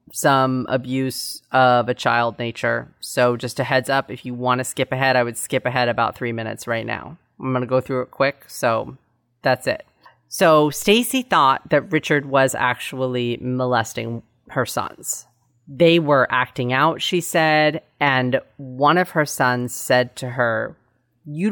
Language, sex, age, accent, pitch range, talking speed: English, female, 30-49, American, 125-145 Hz, 170 wpm